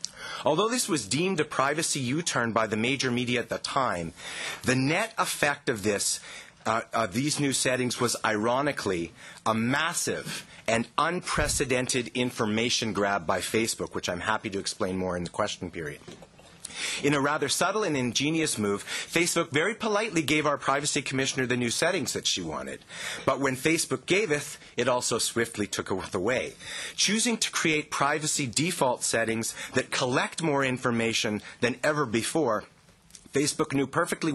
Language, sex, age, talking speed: English, male, 30-49, 155 wpm